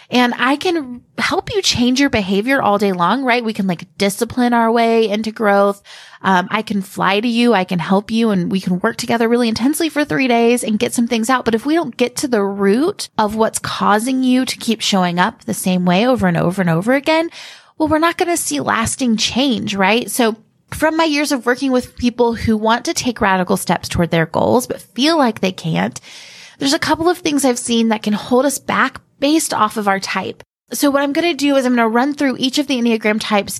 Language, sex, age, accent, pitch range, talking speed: English, female, 20-39, American, 200-260 Hz, 245 wpm